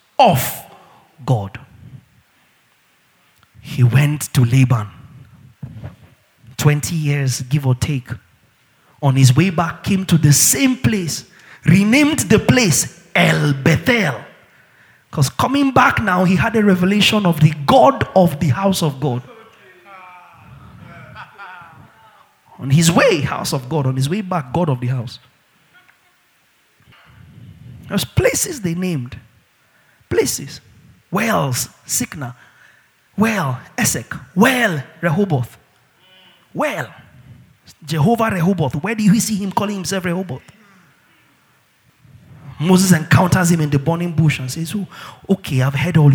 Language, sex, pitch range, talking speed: English, male, 125-175 Hz, 120 wpm